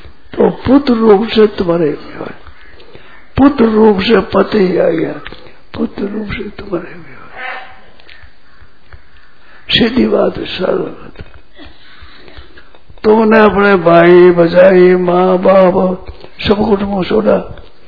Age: 60-79